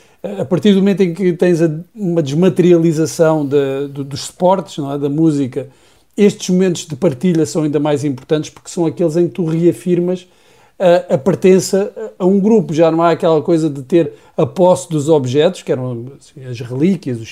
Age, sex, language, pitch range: 50-69, male, Portuguese, 145-190 Hz